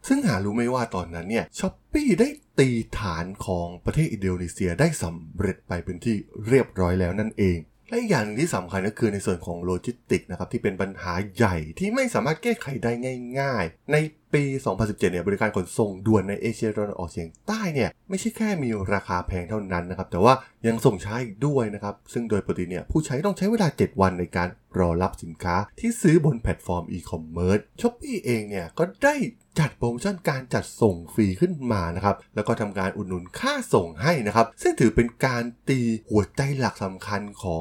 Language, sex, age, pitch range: Thai, male, 20-39, 90-130 Hz